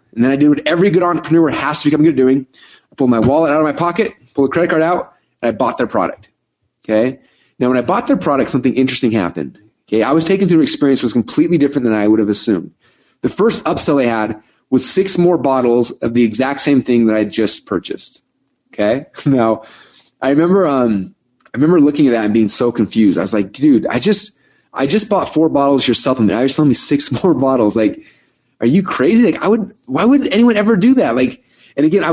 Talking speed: 240 wpm